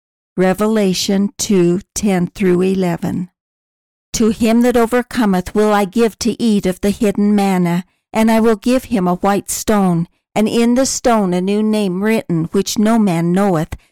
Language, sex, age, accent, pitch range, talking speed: English, female, 60-79, American, 185-225 Hz, 150 wpm